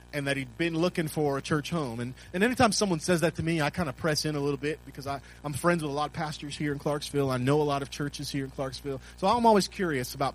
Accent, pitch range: American, 130-175 Hz